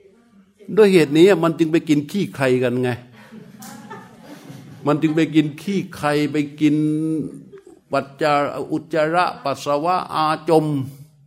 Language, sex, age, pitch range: Thai, male, 60-79, 140-180 Hz